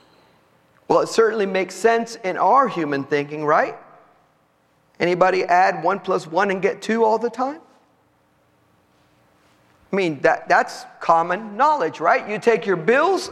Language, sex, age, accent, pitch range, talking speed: English, male, 50-69, American, 200-315 Hz, 145 wpm